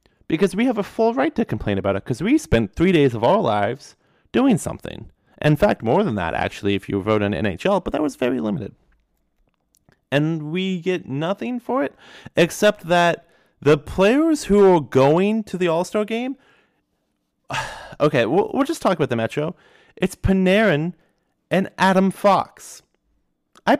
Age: 30-49